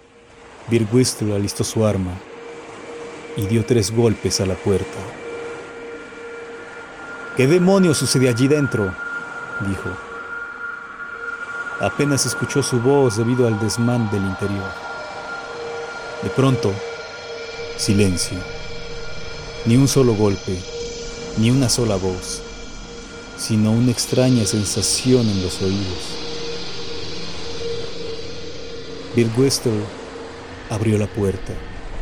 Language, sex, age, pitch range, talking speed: Spanish, male, 40-59, 95-135 Hz, 90 wpm